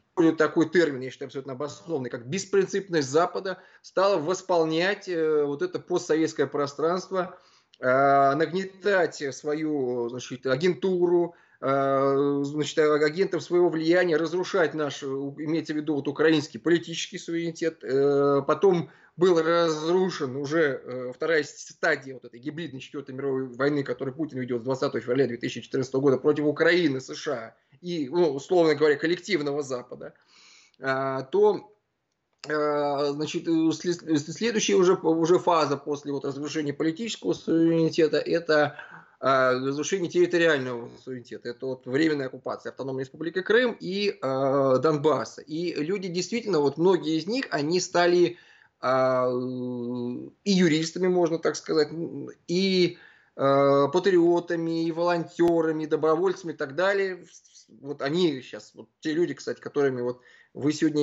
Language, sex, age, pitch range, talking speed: English, male, 20-39, 140-175 Hz, 120 wpm